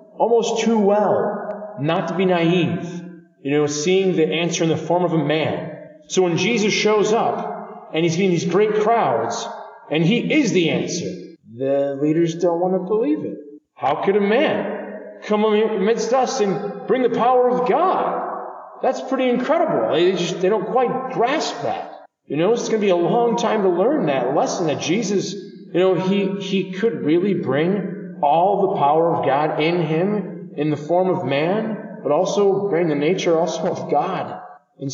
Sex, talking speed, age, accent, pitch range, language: male, 185 wpm, 40-59, American, 150-195 Hz, English